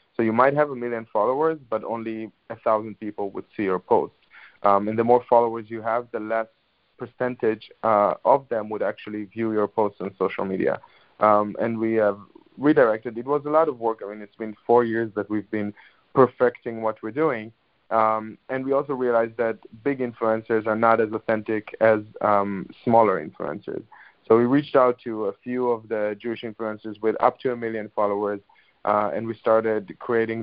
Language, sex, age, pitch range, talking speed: English, male, 20-39, 110-120 Hz, 195 wpm